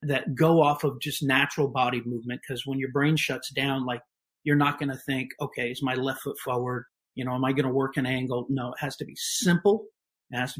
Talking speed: 250 wpm